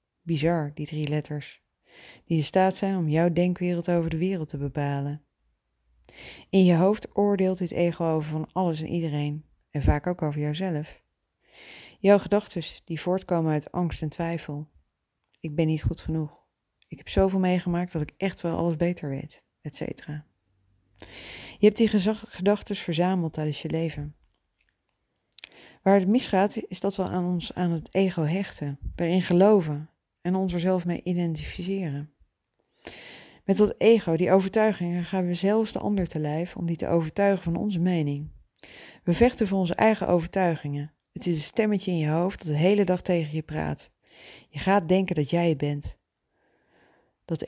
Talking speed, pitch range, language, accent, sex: 170 wpm, 150-185 Hz, Dutch, Dutch, female